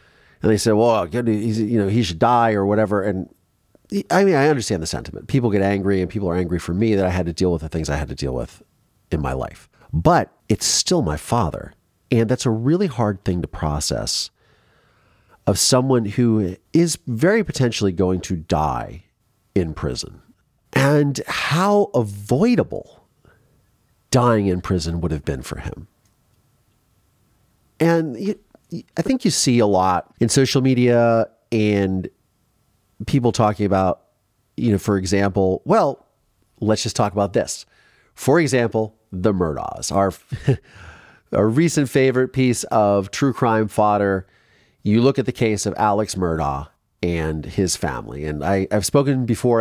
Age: 40-59